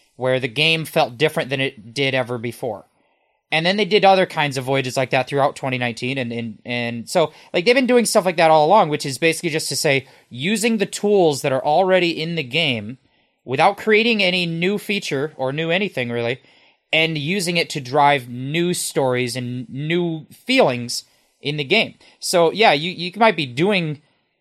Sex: male